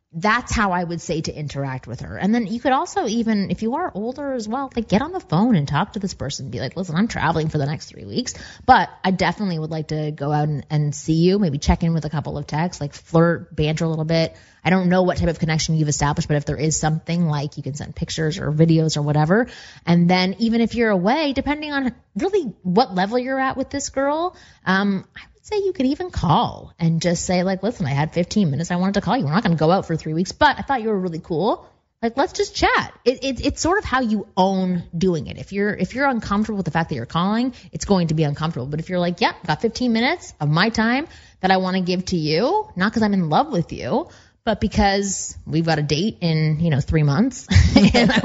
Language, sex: English, female